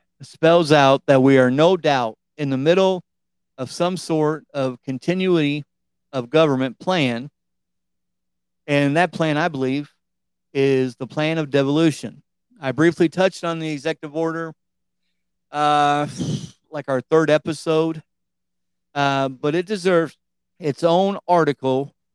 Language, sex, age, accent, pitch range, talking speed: English, male, 40-59, American, 130-165 Hz, 125 wpm